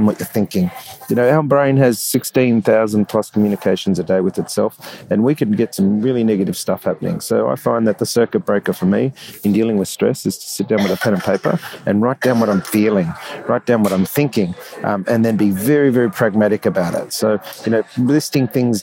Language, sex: English, male